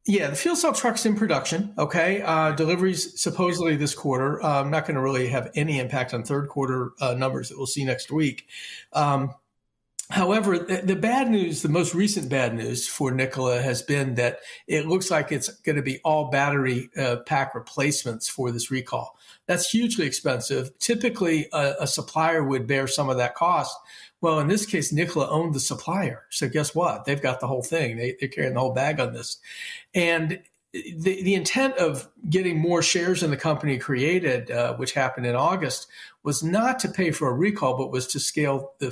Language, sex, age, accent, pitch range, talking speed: English, male, 50-69, American, 130-175 Hz, 200 wpm